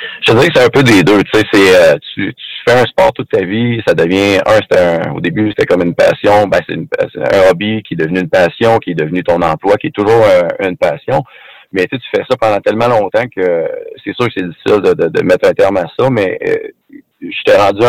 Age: 30-49